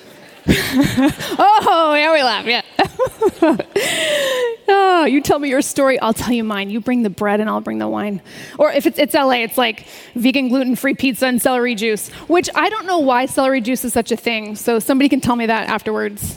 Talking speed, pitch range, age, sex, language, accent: 200 wpm, 230-315 Hz, 20-39, female, English, American